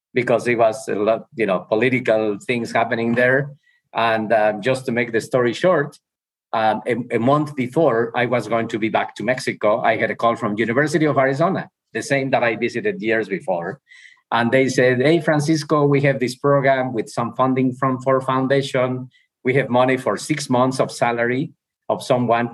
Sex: male